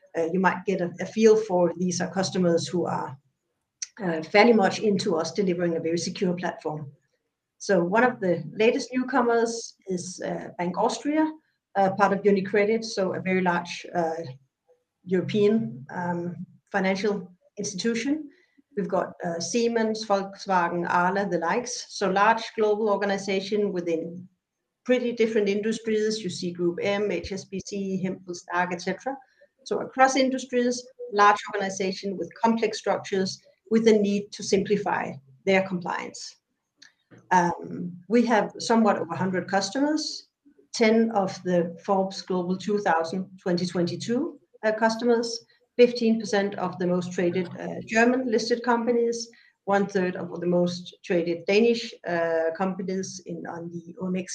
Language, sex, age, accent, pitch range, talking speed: Danish, female, 60-79, native, 180-225 Hz, 135 wpm